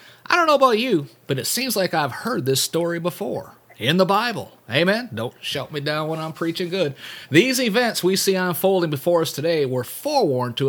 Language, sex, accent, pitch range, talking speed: English, male, American, 135-200 Hz, 210 wpm